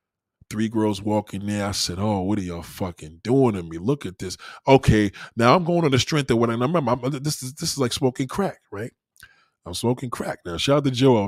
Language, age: English, 20-39